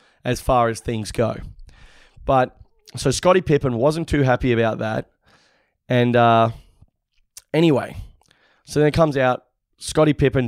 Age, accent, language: 20-39, Australian, English